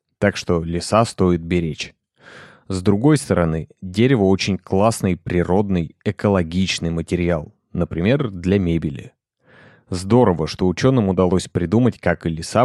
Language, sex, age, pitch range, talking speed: Russian, male, 30-49, 85-105 Hz, 120 wpm